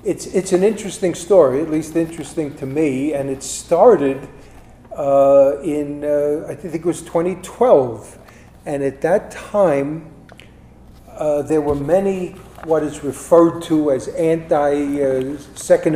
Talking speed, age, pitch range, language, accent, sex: 130 wpm, 50-69, 135-160 Hz, English, American, male